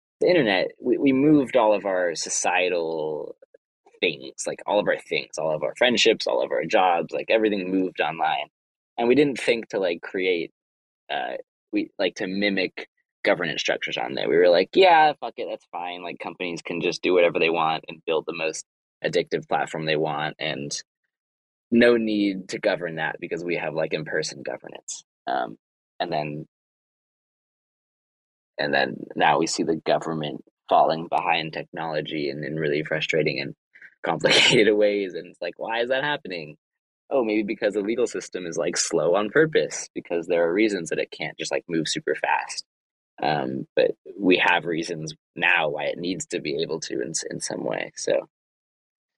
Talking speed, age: 180 wpm, 20-39